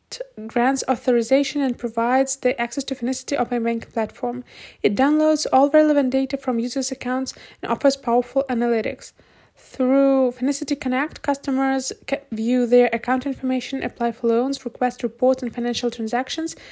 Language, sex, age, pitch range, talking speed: English, female, 20-39, 235-275 Hz, 140 wpm